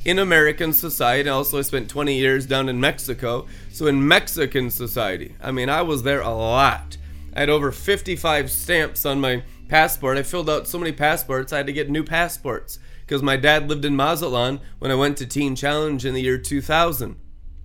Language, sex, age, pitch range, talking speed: English, male, 30-49, 130-155 Hz, 195 wpm